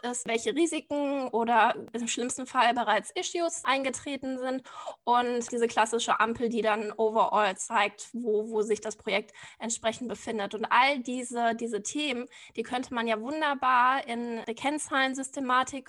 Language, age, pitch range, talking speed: German, 10-29, 225-270 Hz, 145 wpm